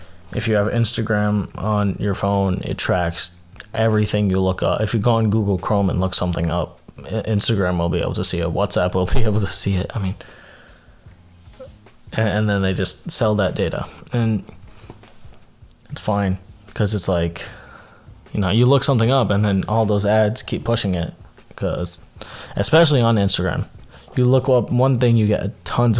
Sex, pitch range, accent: male, 90-115 Hz, American